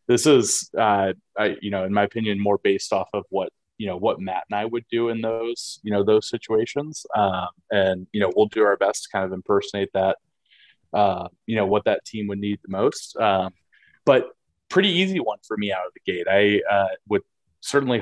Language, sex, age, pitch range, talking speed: English, male, 20-39, 100-120 Hz, 220 wpm